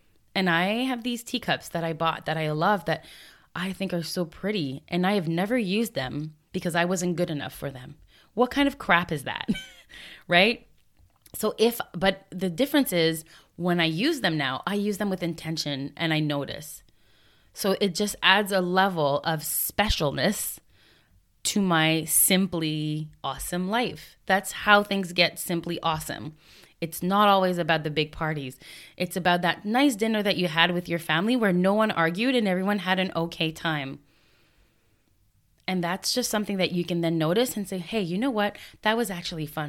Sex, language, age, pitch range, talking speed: female, English, 20-39, 155-200 Hz, 185 wpm